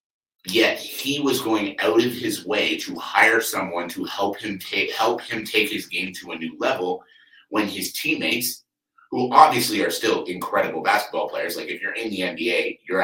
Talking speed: 190 wpm